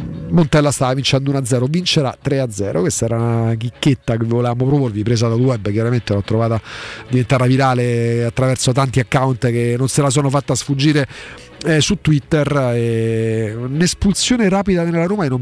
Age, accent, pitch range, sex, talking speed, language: 40-59, native, 120-170 Hz, male, 160 wpm, Italian